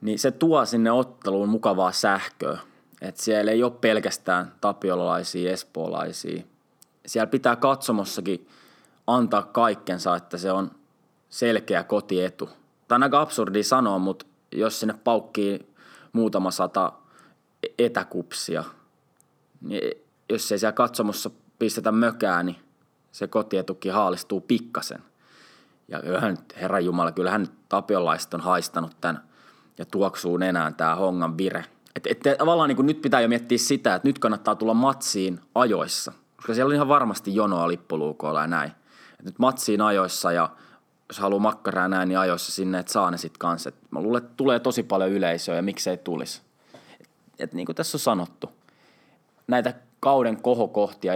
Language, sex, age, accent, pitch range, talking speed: Finnish, male, 20-39, native, 90-120 Hz, 135 wpm